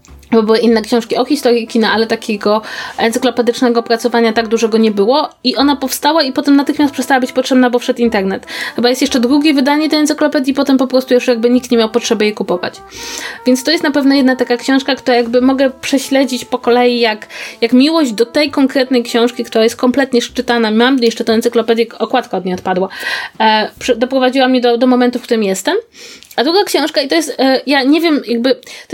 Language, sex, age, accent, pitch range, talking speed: Polish, female, 20-39, native, 230-275 Hz, 205 wpm